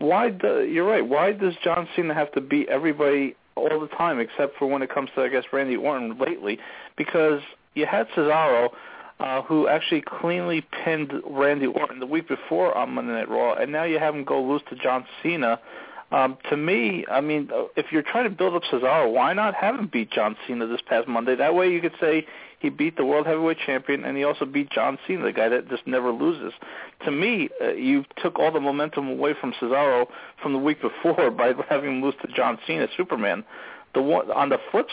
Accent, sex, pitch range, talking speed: American, male, 135-175 Hz, 215 wpm